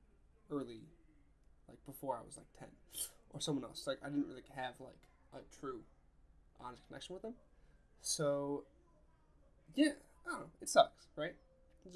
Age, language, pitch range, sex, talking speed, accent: 10-29, English, 125-165 Hz, male, 155 wpm, American